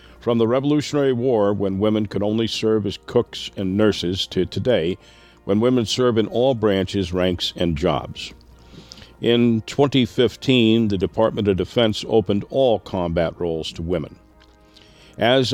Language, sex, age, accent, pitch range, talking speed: English, male, 50-69, American, 90-115 Hz, 145 wpm